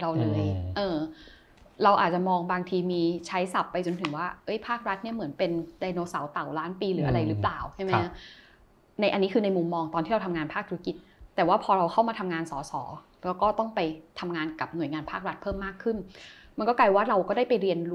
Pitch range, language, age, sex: 165-210 Hz, Thai, 20-39, female